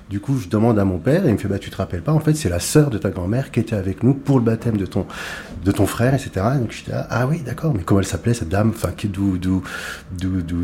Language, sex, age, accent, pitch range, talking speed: French, male, 30-49, French, 90-115 Hz, 305 wpm